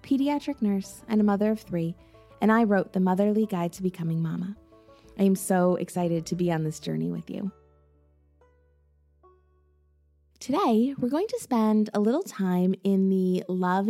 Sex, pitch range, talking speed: female, 175-220 Hz, 165 wpm